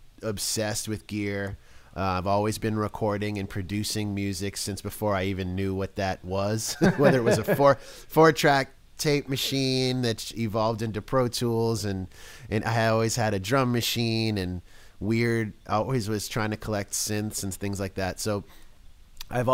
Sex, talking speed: male, 170 wpm